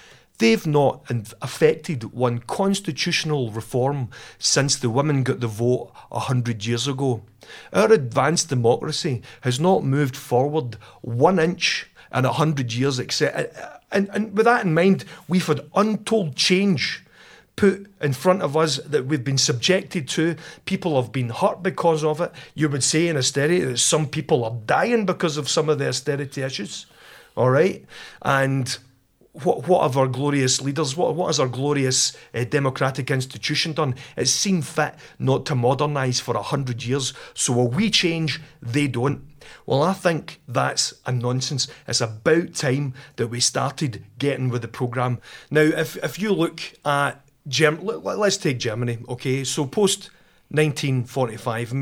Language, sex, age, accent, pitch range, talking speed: English, male, 40-59, British, 125-160 Hz, 155 wpm